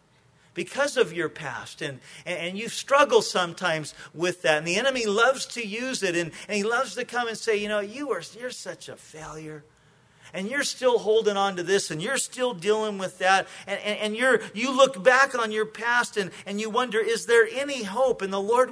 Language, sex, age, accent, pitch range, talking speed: English, male, 40-59, American, 150-220 Hz, 220 wpm